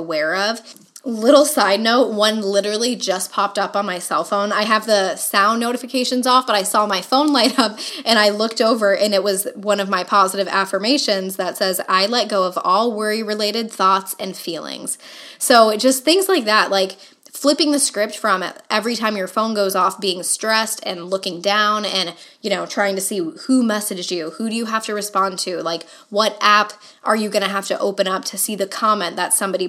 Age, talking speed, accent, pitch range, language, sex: 10-29, 215 wpm, American, 190-225 Hz, English, female